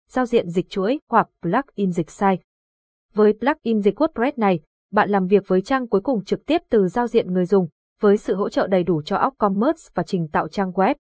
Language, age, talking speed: Vietnamese, 20-39, 215 wpm